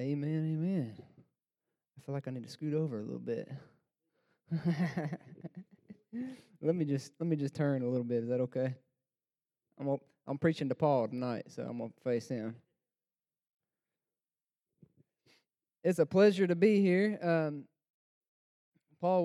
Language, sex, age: English, male, 20-39